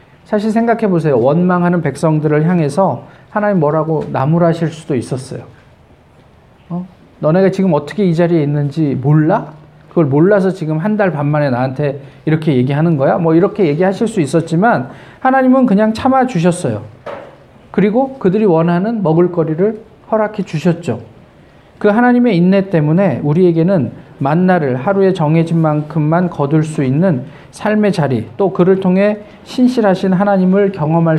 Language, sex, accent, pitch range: Korean, male, native, 155-210 Hz